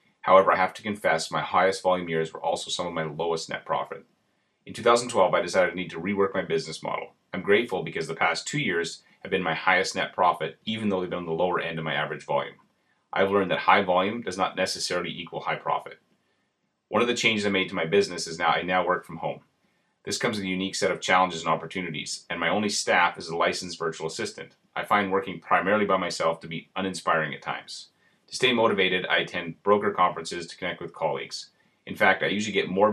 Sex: male